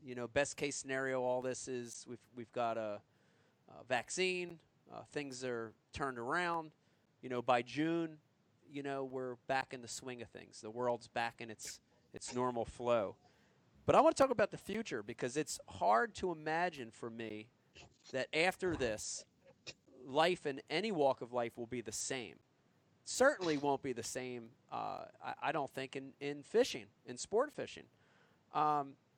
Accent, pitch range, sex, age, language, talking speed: American, 125-155 Hz, male, 30-49, English, 175 wpm